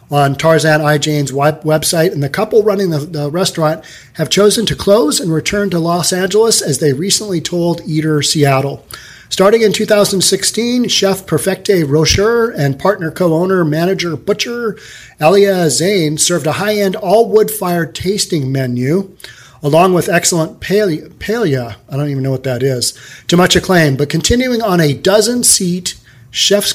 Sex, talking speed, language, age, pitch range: male, 155 wpm, English, 40-59, 145-190 Hz